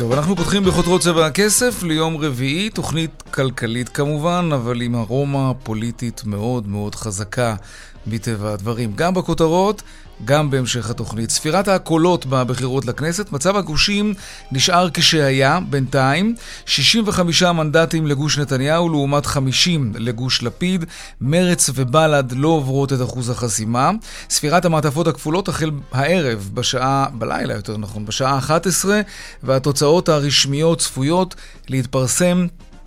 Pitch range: 125-170 Hz